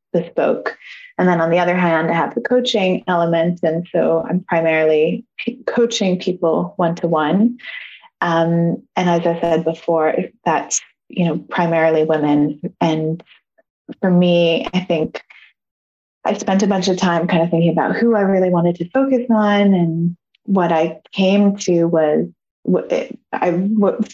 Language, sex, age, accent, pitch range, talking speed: English, female, 20-39, American, 165-205 Hz, 155 wpm